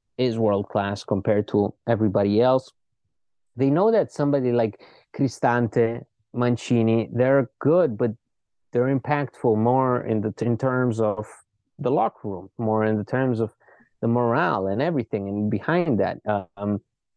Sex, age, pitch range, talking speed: male, 30-49, 110-145 Hz, 145 wpm